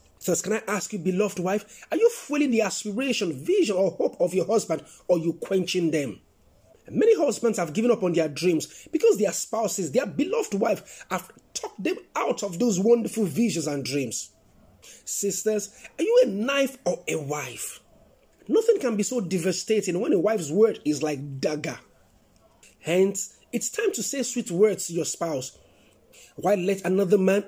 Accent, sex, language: Nigerian, male, English